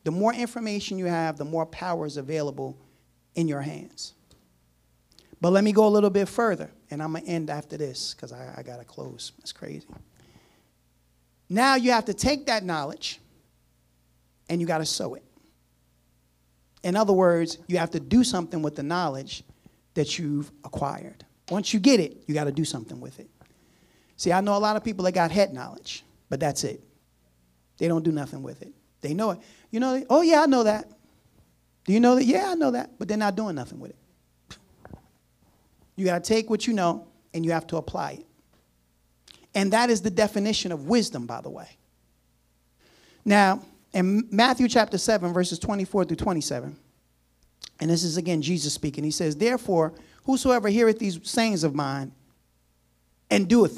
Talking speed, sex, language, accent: 185 wpm, male, English, American